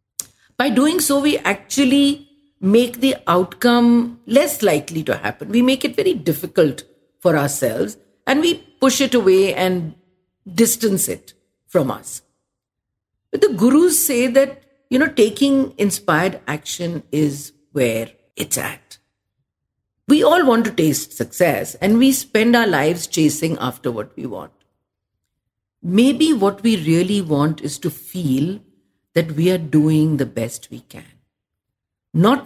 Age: 50-69